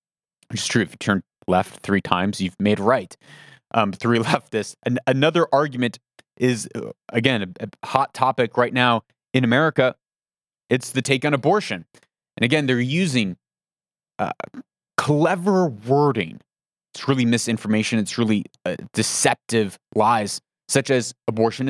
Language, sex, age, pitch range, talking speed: English, male, 30-49, 120-170 Hz, 135 wpm